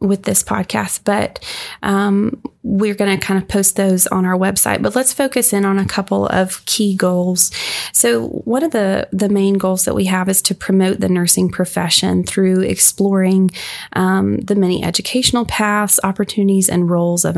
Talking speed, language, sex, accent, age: 180 wpm, English, female, American, 20-39